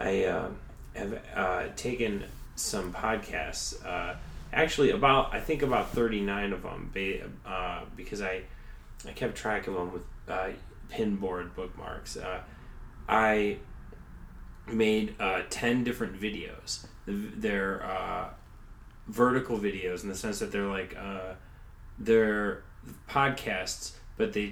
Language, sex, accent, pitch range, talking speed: English, male, American, 95-110 Hz, 125 wpm